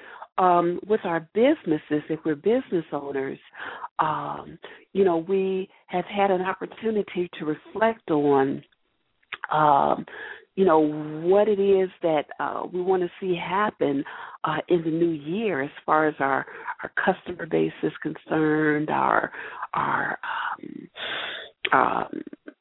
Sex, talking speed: female, 130 wpm